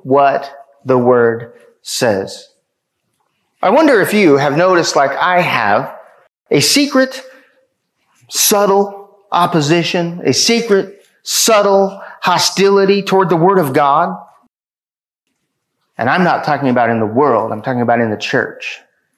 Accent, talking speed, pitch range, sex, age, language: American, 125 wpm, 145-215 Hz, male, 30-49, English